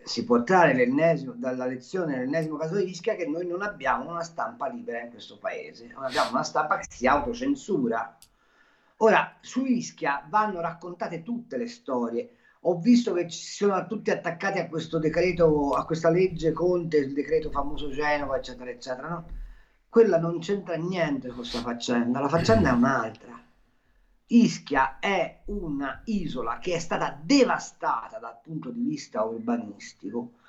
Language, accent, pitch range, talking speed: Italian, native, 155-235 Hz, 155 wpm